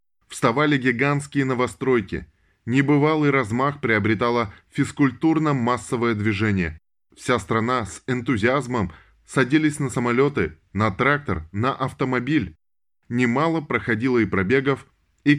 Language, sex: Russian, male